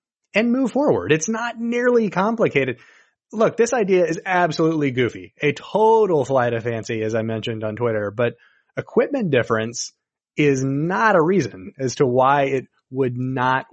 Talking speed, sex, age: 155 wpm, male, 30-49